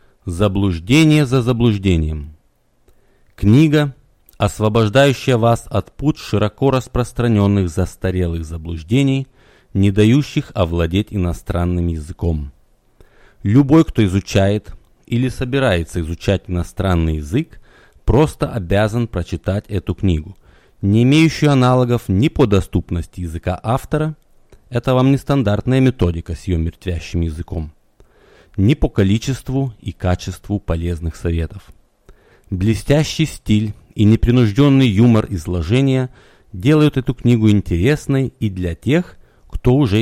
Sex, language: male, Russian